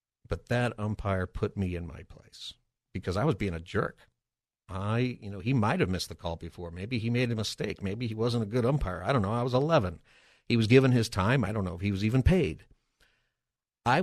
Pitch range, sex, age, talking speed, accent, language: 95-125 Hz, male, 50-69, 230 wpm, American, English